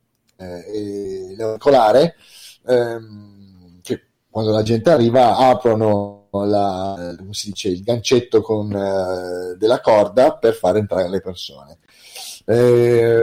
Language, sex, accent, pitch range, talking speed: Italian, male, native, 105-125 Hz, 115 wpm